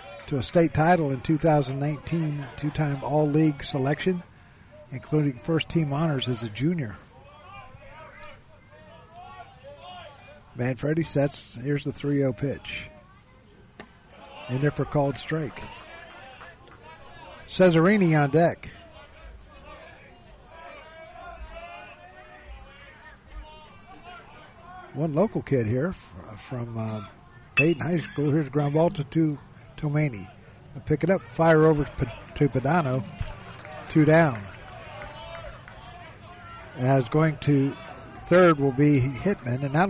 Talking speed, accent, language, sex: 95 wpm, American, English, male